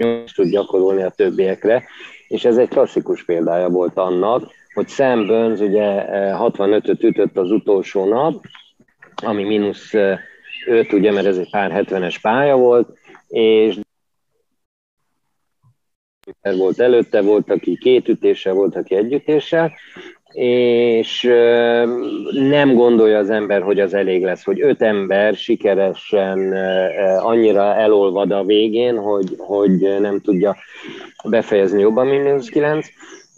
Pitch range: 100-135 Hz